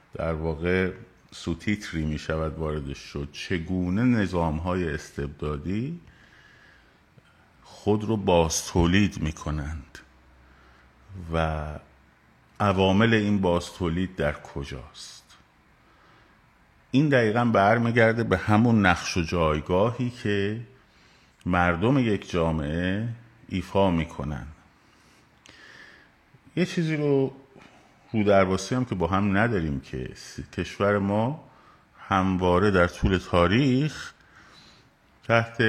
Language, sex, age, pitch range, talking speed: Persian, male, 50-69, 80-110 Hz, 95 wpm